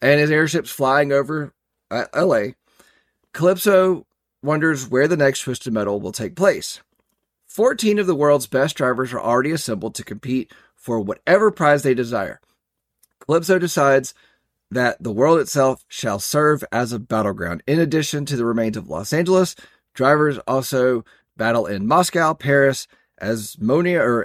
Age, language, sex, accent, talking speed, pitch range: 30-49, English, male, American, 150 wpm, 110-145 Hz